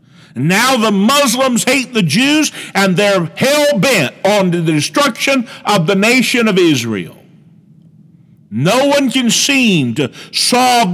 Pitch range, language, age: 160-220 Hz, English, 50-69